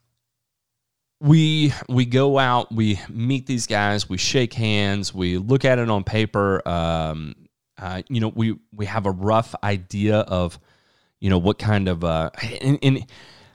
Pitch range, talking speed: 95-125 Hz, 155 wpm